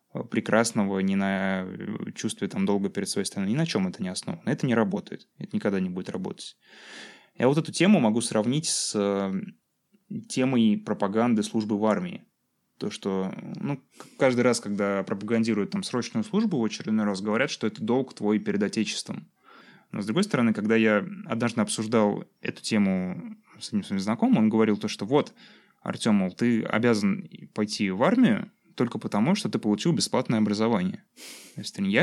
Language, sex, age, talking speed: Russian, male, 20-39, 165 wpm